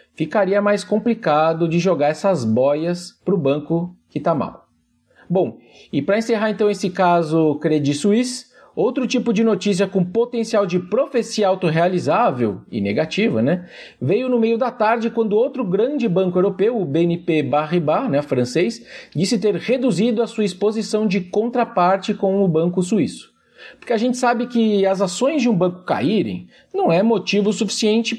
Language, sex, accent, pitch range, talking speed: Portuguese, male, Brazilian, 180-230 Hz, 160 wpm